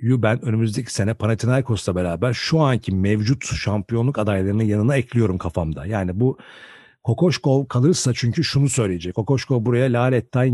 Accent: native